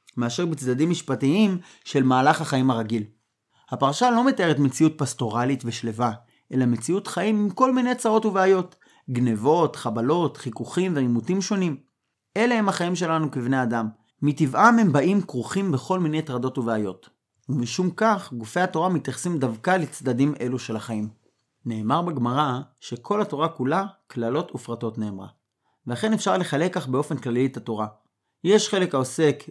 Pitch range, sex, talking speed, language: 120-180 Hz, male, 140 wpm, Hebrew